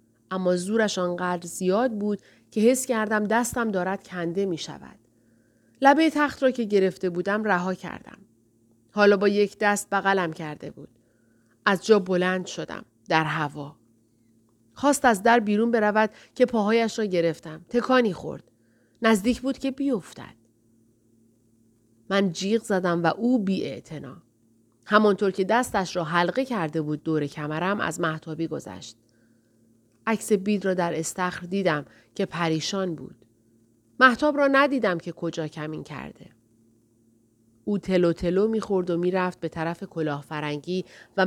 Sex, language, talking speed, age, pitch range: female, Persian, 140 wpm, 30-49, 155-215 Hz